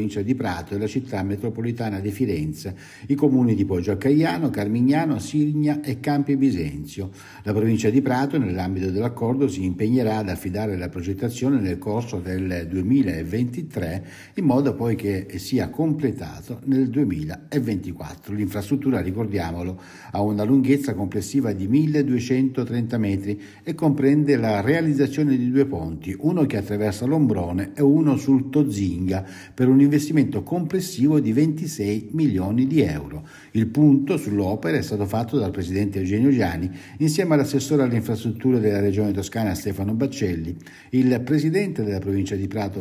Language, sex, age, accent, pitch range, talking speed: Italian, male, 60-79, native, 100-140 Hz, 140 wpm